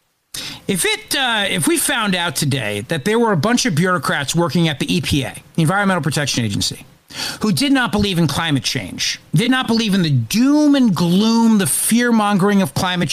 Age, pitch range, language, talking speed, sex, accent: 50-69, 145-210 Hz, English, 190 wpm, male, American